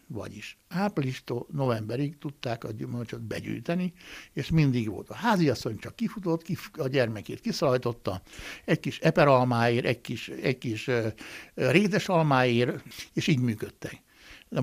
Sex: male